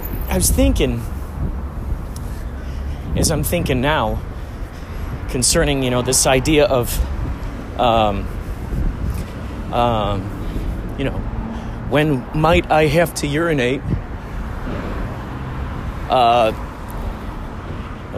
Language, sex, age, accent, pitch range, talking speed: English, male, 40-59, American, 85-120 Hz, 80 wpm